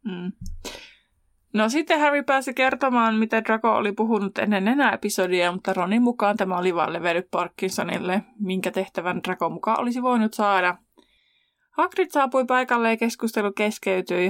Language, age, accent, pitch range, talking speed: Finnish, 20-39, native, 185-230 Hz, 145 wpm